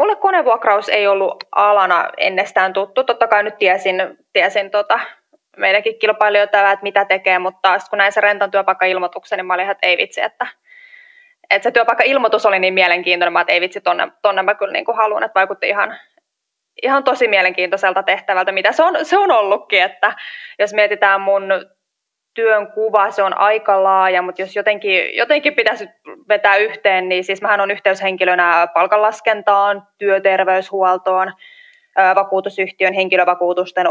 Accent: native